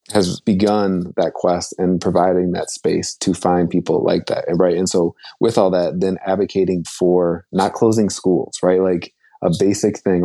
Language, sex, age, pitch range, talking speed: English, male, 20-39, 90-100 Hz, 180 wpm